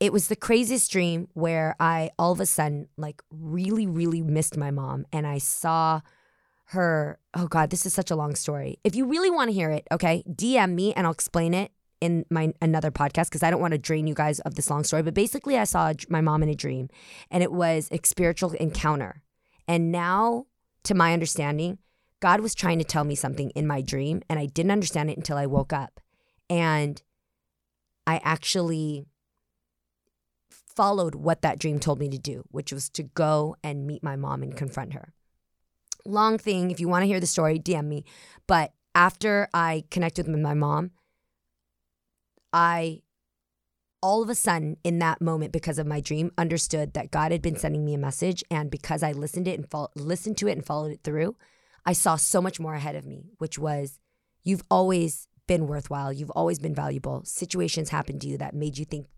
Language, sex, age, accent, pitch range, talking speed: English, female, 20-39, American, 145-175 Hz, 200 wpm